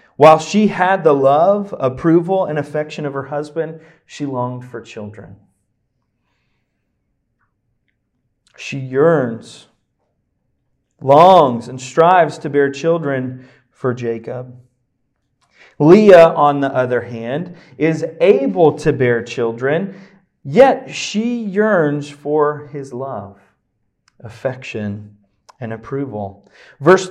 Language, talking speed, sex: English, 100 wpm, male